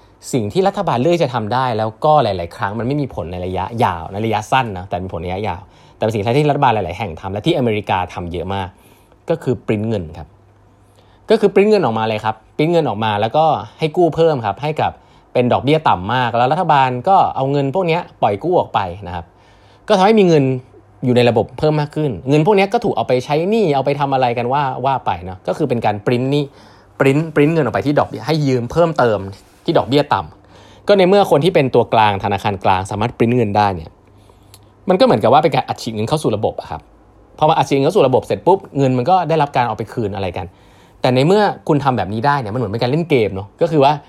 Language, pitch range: Thai, 100-145 Hz